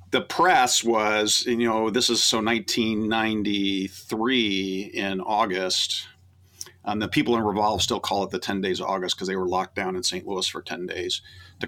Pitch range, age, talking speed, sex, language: 95-105 Hz, 50-69, 185 wpm, male, English